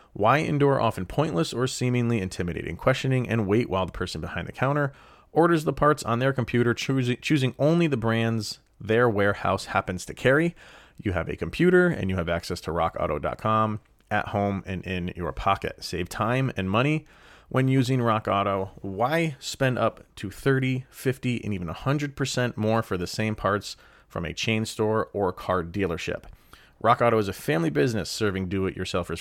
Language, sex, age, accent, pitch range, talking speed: English, male, 30-49, American, 95-125 Hz, 175 wpm